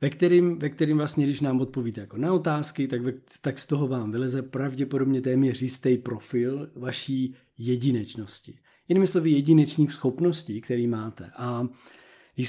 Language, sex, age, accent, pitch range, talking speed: Czech, male, 40-59, native, 125-140 Hz, 155 wpm